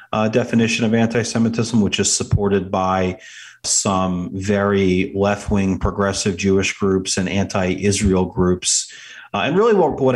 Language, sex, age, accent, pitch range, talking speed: English, male, 40-59, American, 95-125 Hz, 130 wpm